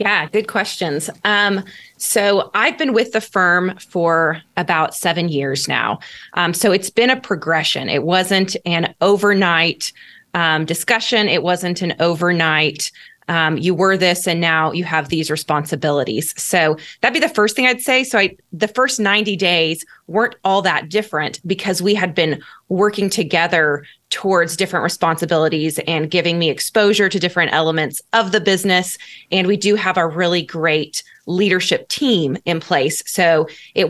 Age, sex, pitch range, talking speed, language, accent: 20-39, female, 165-200 Hz, 160 wpm, English, American